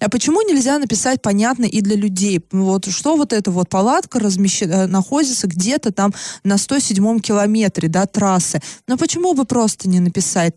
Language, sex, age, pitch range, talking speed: Russian, female, 20-39, 200-265 Hz, 170 wpm